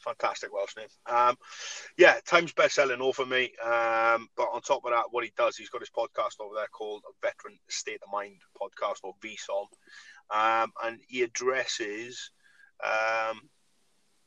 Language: English